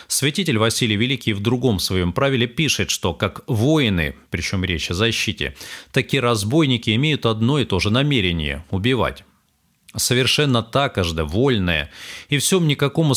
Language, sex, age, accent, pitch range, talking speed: Russian, male, 30-49, native, 100-130 Hz, 140 wpm